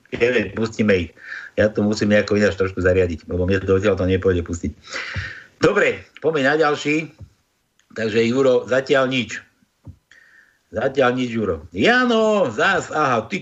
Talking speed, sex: 150 wpm, male